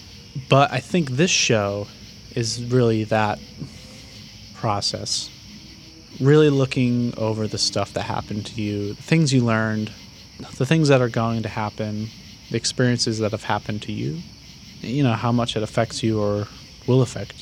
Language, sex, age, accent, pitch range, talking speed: English, male, 20-39, American, 105-125 Hz, 155 wpm